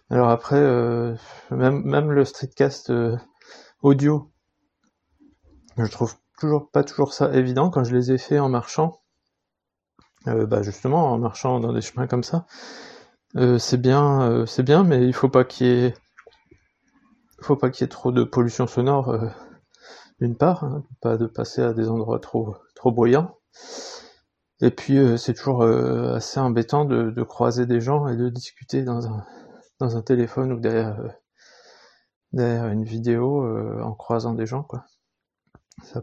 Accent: French